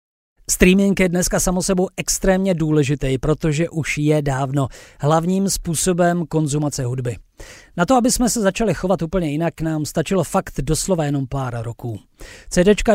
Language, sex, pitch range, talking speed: Czech, male, 140-190 Hz, 145 wpm